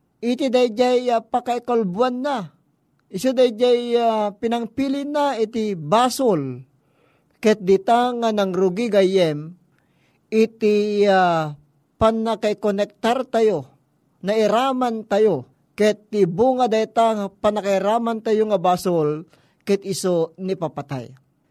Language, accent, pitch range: Filipino, native, 195-255 Hz